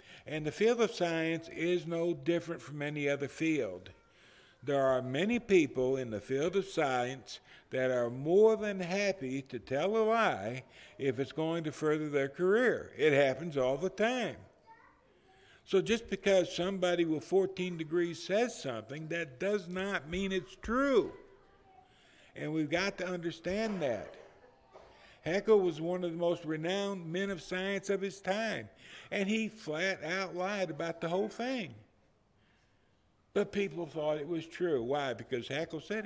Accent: American